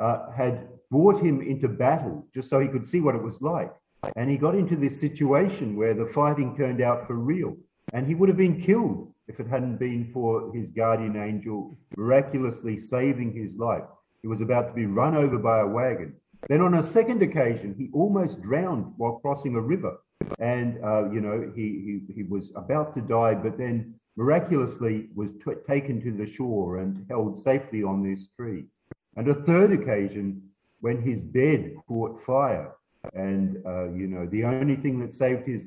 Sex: male